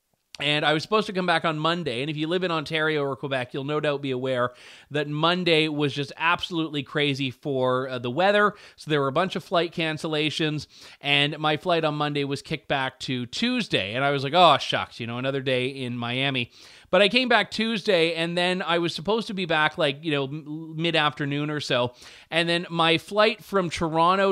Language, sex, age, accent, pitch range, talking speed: English, male, 30-49, American, 135-175 Hz, 215 wpm